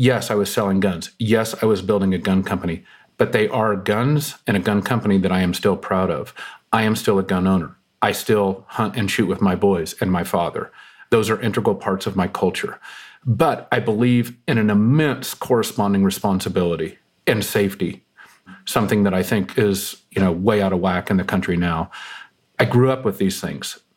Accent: American